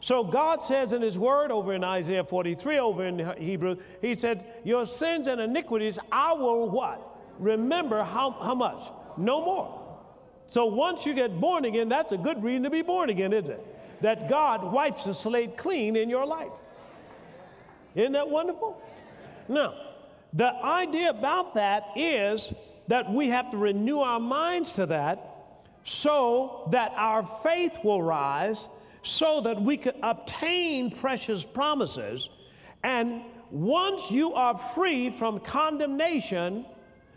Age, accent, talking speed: 50-69, American, 145 wpm